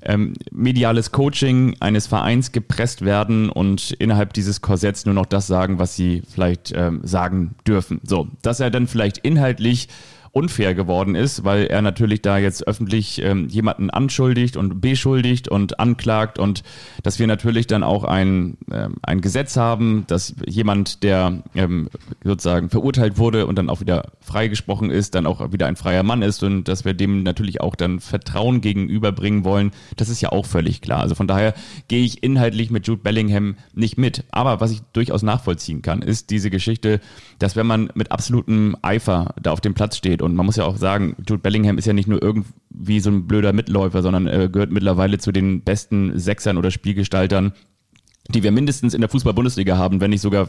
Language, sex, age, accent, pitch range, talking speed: German, male, 30-49, German, 95-115 Hz, 185 wpm